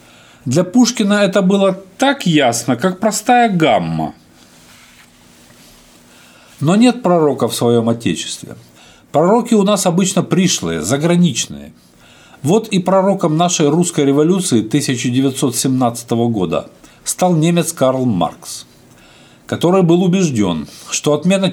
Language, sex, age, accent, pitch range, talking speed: Russian, male, 50-69, native, 130-180 Hz, 105 wpm